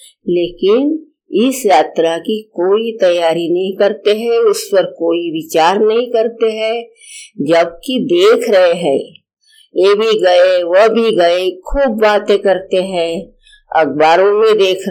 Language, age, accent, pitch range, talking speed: Hindi, 50-69, native, 180-270 Hz, 135 wpm